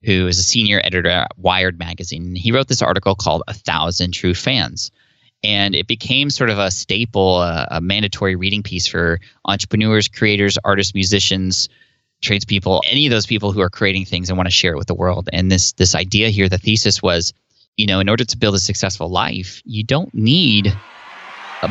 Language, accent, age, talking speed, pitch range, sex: English, American, 20-39, 200 wpm, 90-110 Hz, male